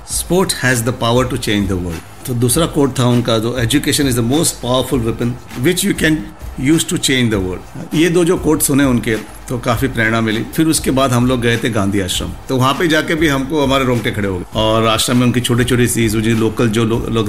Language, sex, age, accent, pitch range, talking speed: Hindi, male, 50-69, native, 105-130 Hz, 235 wpm